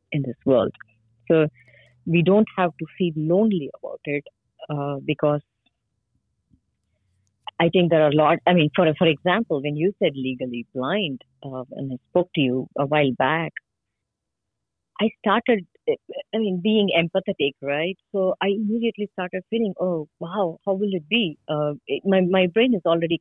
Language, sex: English, female